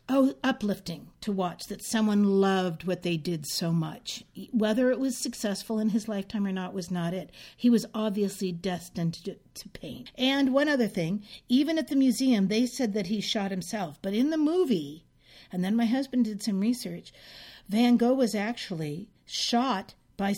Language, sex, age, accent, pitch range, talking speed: English, female, 50-69, American, 175-230 Hz, 185 wpm